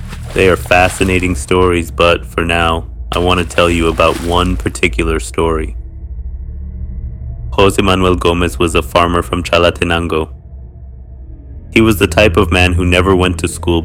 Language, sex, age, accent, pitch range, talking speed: English, male, 30-49, American, 70-90 Hz, 150 wpm